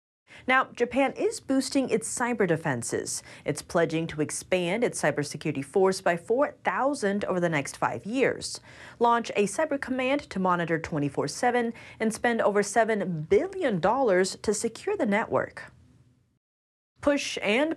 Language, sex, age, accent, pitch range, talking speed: English, female, 30-49, American, 160-245 Hz, 130 wpm